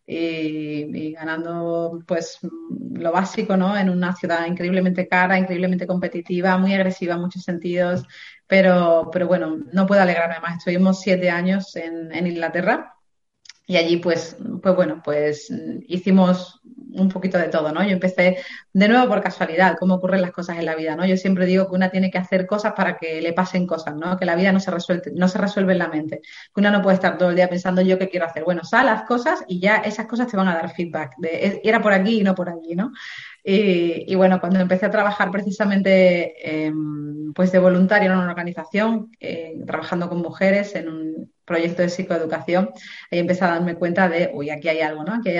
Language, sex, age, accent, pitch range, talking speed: Spanish, female, 30-49, Spanish, 165-190 Hz, 210 wpm